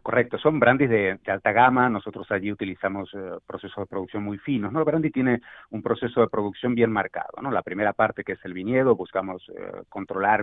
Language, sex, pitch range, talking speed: Spanish, male, 95-115 Hz, 215 wpm